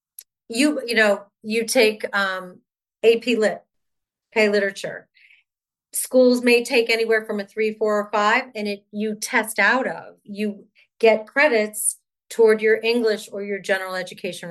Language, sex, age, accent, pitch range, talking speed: English, female, 40-59, American, 200-230 Hz, 150 wpm